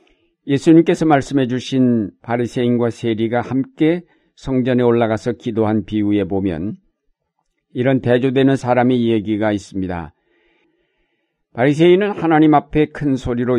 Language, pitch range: Korean, 110-135 Hz